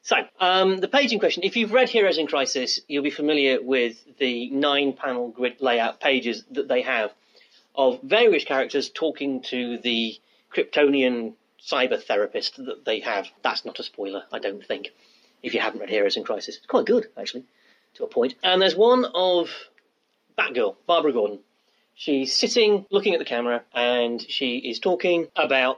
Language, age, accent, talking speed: English, 30-49, British, 175 wpm